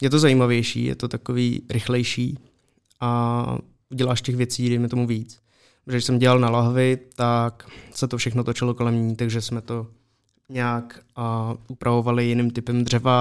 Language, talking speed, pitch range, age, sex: Czech, 155 wpm, 115-125 Hz, 20-39, male